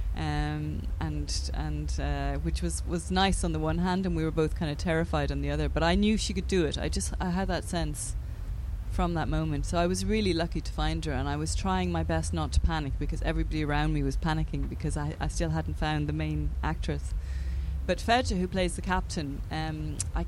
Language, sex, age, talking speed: English, female, 20-39, 230 wpm